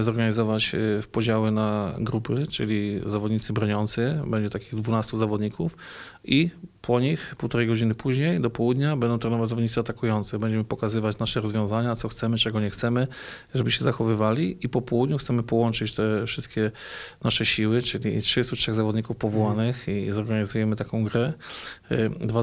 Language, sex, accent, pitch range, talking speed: Polish, male, native, 110-120 Hz, 145 wpm